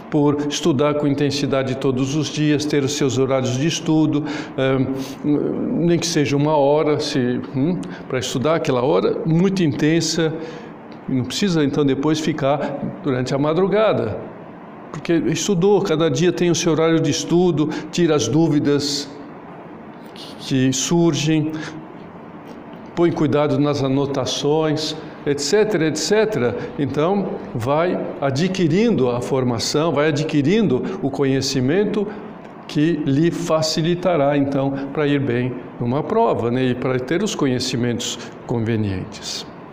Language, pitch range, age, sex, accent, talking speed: Portuguese, 135-170 Hz, 60-79, male, Brazilian, 120 wpm